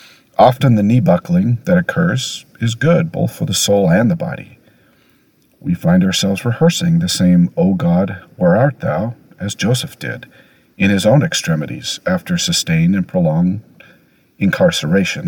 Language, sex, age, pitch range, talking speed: English, male, 50-69, 120-175 Hz, 145 wpm